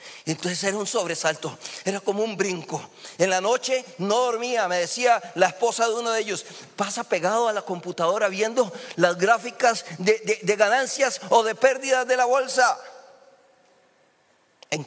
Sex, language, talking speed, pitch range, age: male, Spanish, 160 wpm, 170-260 Hz, 50-69